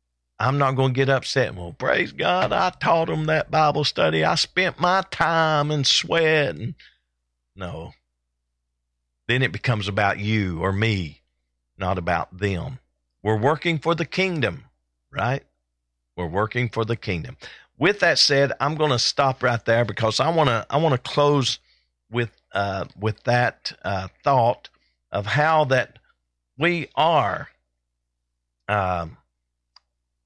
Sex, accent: male, American